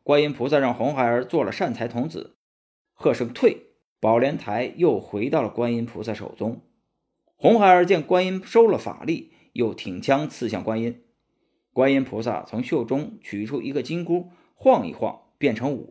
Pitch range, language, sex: 115-165 Hz, Chinese, male